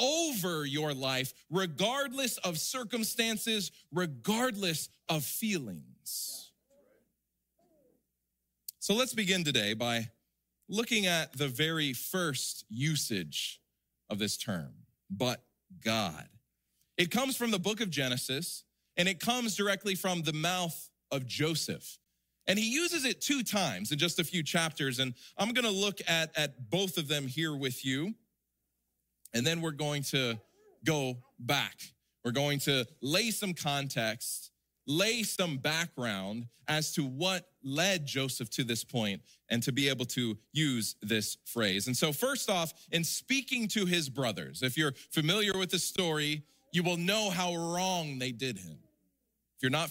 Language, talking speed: German, 145 wpm